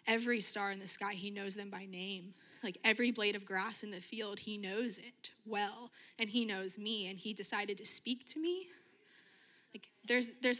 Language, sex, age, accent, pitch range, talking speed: English, female, 20-39, American, 200-230 Hz, 205 wpm